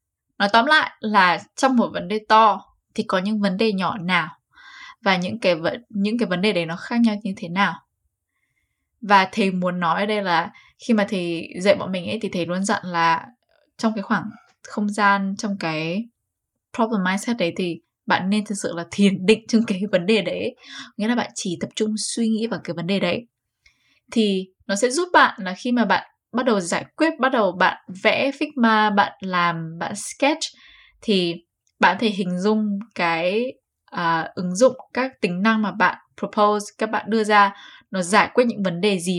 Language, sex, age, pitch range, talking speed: Vietnamese, female, 10-29, 185-230 Hz, 200 wpm